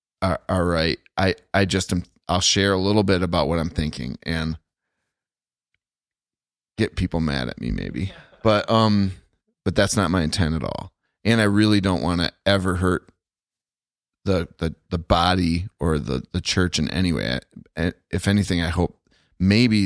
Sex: male